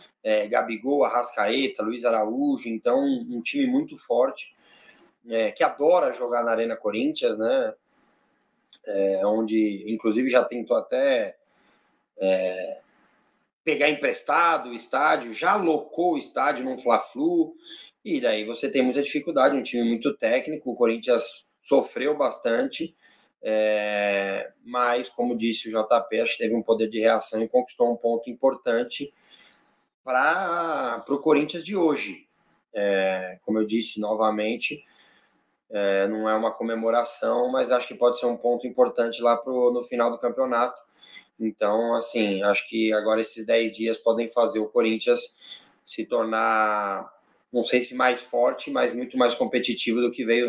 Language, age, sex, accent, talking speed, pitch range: Portuguese, 20-39, male, Brazilian, 140 wpm, 110-130 Hz